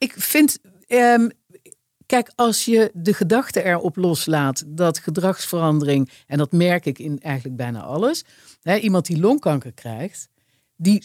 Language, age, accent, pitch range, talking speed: Dutch, 50-69, Dutch, 145-200 Hz, 140 wpm